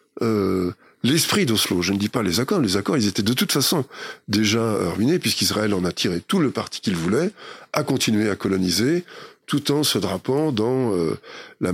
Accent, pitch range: French, 95-125 Hz